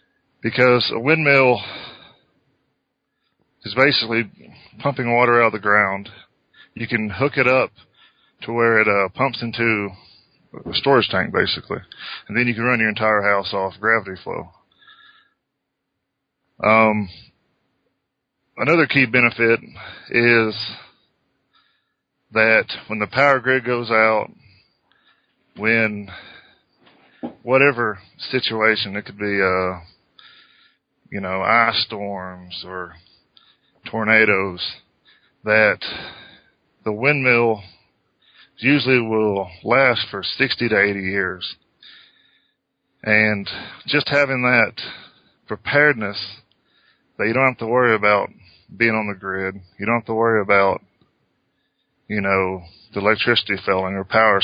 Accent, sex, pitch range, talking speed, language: American, male, 100-120 Hz, 110 wpm, English